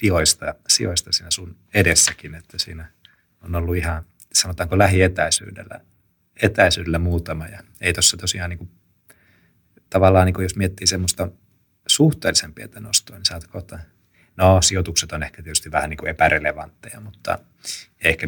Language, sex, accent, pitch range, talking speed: Finnish, male, native, 80-100 Hz, 130 wpm